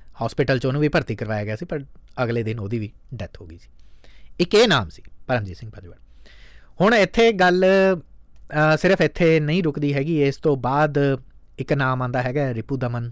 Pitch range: 120-160 Hz